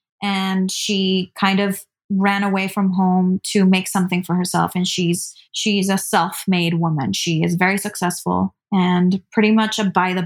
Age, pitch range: 20-39, 180-205 Hz